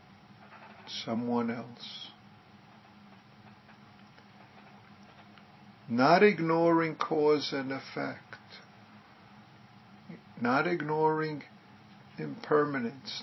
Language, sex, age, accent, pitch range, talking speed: English, male, 50-69, American, 115-155 Hz, 45 wpm